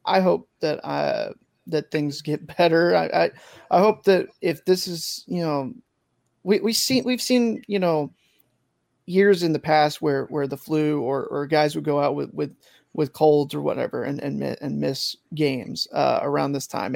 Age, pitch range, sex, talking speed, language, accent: 30-49, 145-170 Hz, male, 190 wpm, English, American